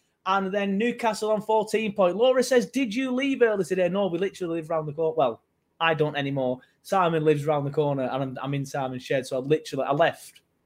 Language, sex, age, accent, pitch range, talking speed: English, male, 20-39, British, 150-225 Hz, 225 wpm